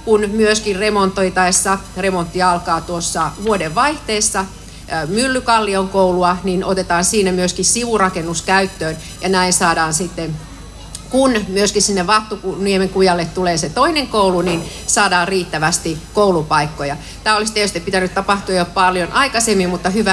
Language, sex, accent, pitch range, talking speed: Finnish, female, native, 185-230 Hz, 130 wpm